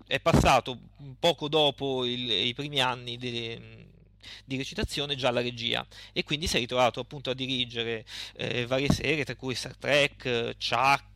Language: Italian